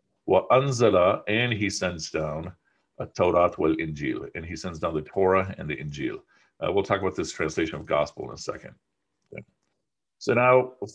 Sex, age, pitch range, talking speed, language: male, 50-69, 90-115 Hz, 175 wpm, English